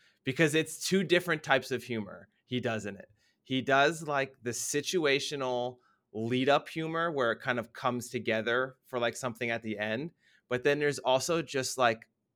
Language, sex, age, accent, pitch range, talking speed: English, male, 20-39, American, 115-145 Hz, 180 wpm